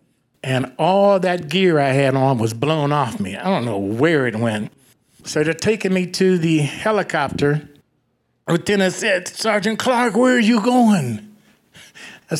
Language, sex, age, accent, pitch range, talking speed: English, male, 60-79, American, 145-190 Hz, 160 wpm